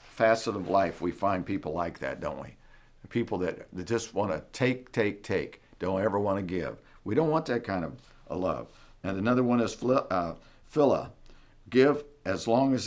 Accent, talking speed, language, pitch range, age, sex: American, 185 wpm, English, 90-115 Hz, 50-69, male